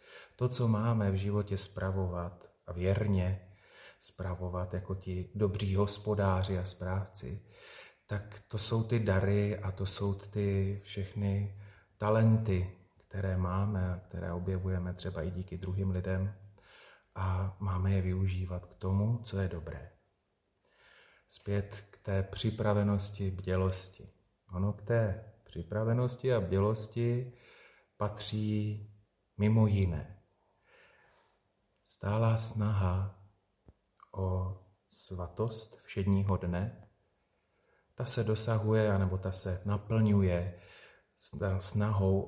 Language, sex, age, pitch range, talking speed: Slovak, male, 40-59, 95-105 Hz, 105 wpm